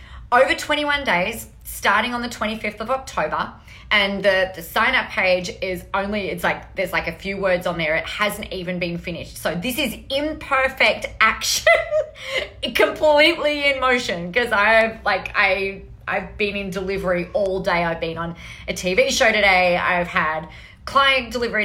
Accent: Australian